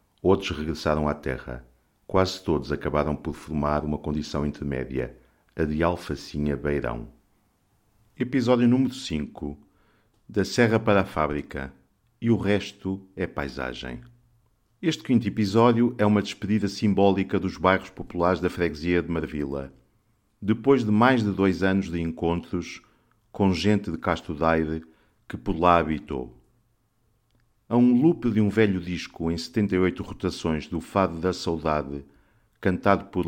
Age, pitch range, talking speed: 50-69, 80-105 Hz, 135 wpm